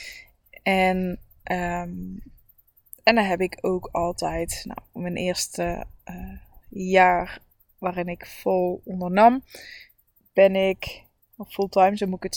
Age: 20-39